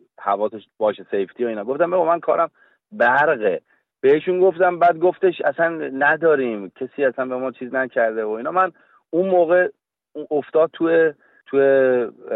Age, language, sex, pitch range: 30-49, Persian, male, 115-165 Hz